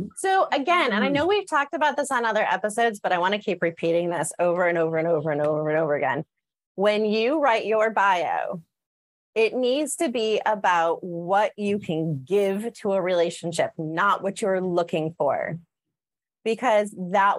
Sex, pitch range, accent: female, 175-240 Hz, American